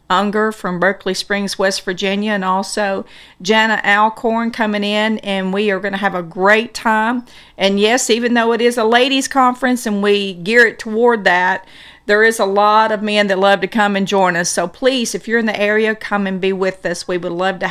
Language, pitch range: English, 195-235 Hz